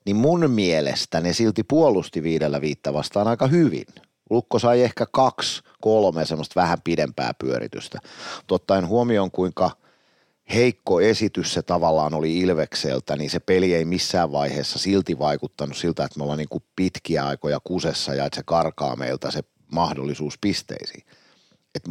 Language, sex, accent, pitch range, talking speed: Finnish, male, native, 75-95 Hz, 150 wpm